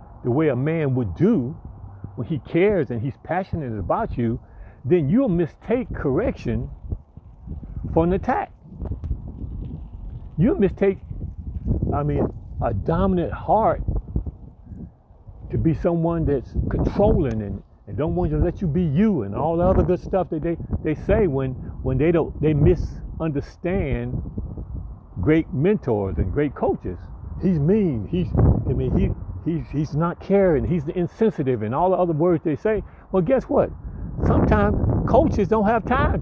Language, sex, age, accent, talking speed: English, male, 60-79, American, 150 wpm